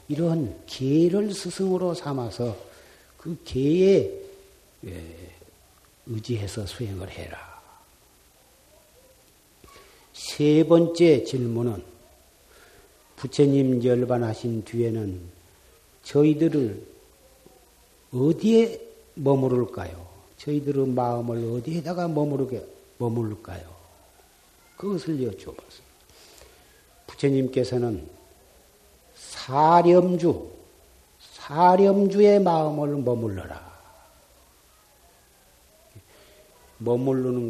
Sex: male